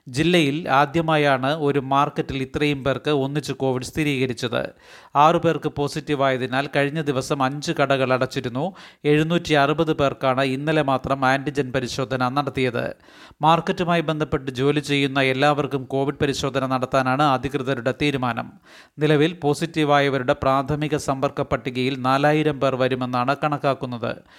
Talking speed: 105 wpm